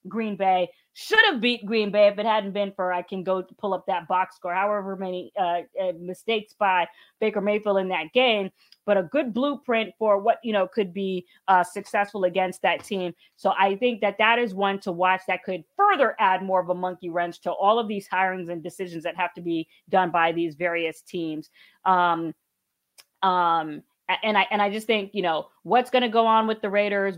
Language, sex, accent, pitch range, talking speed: English, female, American, 175-210 Hz, 215 wpm